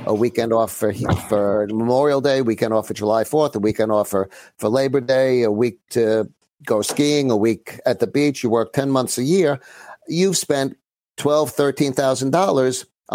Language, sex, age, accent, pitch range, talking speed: English, male, 50-69, American, 115-140 Hz, 185 wpm